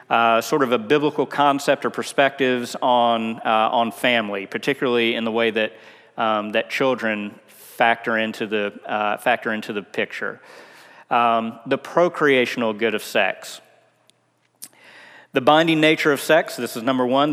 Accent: American